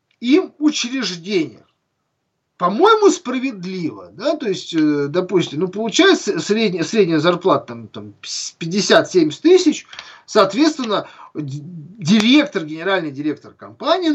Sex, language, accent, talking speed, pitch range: male, Russian, native, 80 wpm, 150-255 Hz